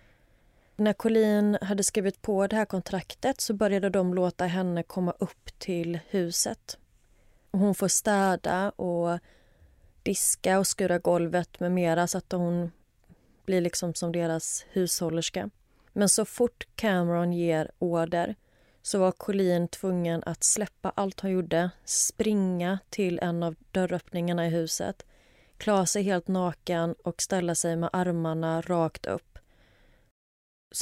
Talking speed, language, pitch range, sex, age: 135 wpm, Swedish, 165-195 Hz, female, 30-49